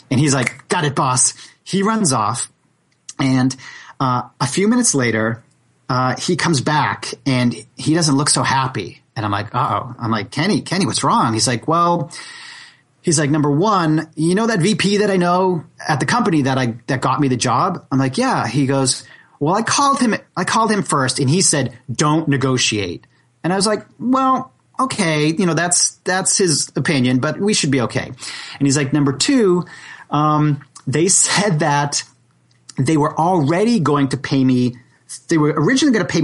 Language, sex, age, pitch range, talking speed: English, male, 30-49, 130-180 Hz, 195 wpm